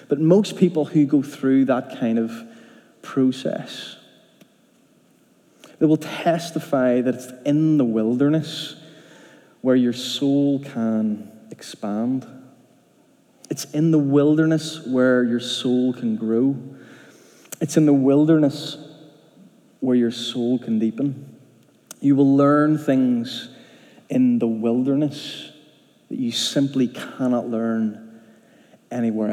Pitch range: 120-155 Hz